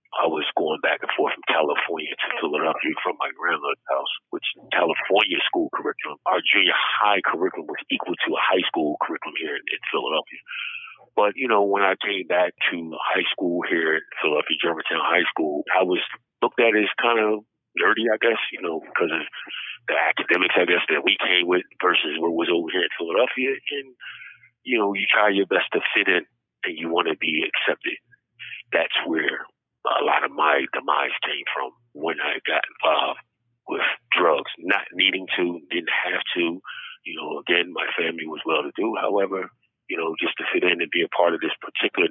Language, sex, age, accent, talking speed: English, male, 50-69, American, 195 wpm